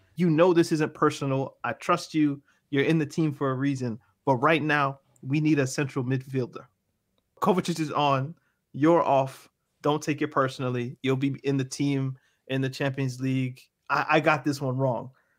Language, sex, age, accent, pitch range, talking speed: English, male, 30-49, American, 135-180 Hz, 185 wpm